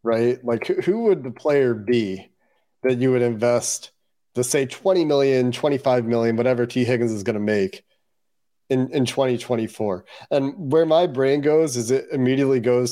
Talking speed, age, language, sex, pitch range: 165 wpm, 40-59, English, male, 120-140 Hz